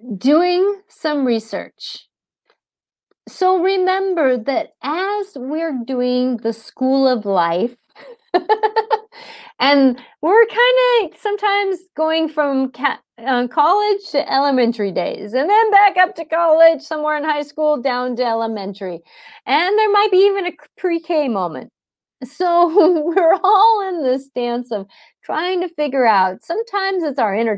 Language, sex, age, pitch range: English, female, 30-49, 245-360 Hz